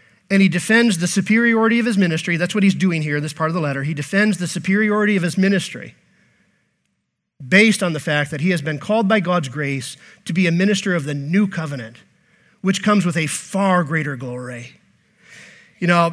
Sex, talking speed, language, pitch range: male, 205 wpm, English, 165-220 Hz